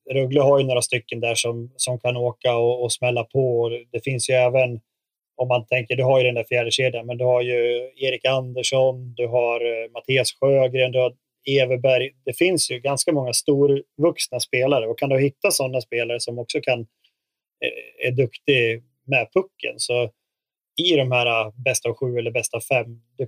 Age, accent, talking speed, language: 20-39, native, 195 wpm, Swedish